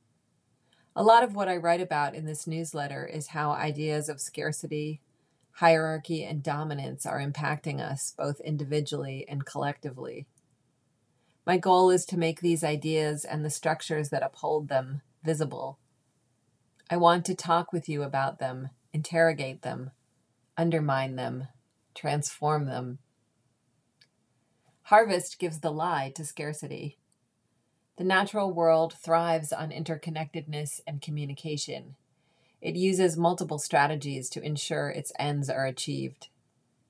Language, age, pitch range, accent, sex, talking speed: English, 40-59, 140-165 Hz, American, female, 125 wpm